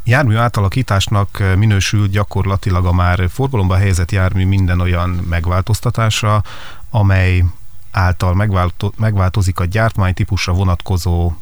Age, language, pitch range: 30-49, Hungarian, 90-105 Hz